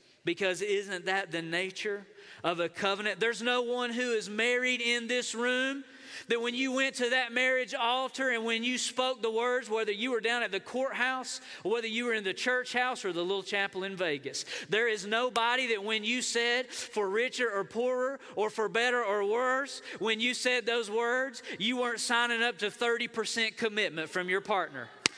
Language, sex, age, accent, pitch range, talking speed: English, male, 40-59, American, 220-265 Hz, 195 wpm